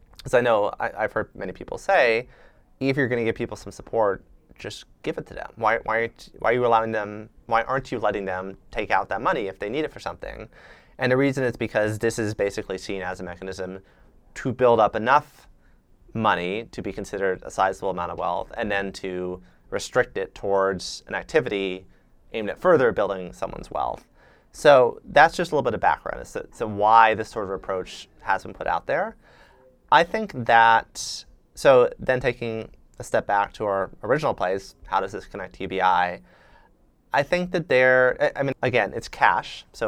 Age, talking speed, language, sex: 30-49, 195 wpm, English, male